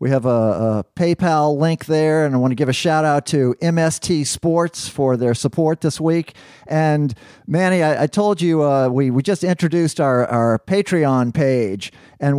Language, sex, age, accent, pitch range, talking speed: English, male, 50-69, American, 115-150 Hz, 185 wpm